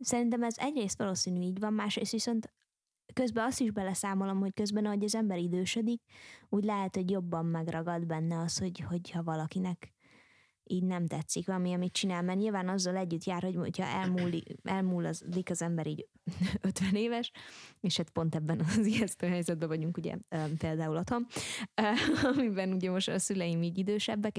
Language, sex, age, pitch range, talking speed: Hungarian, female, 20-39, 170-200 Hz, 165 wpm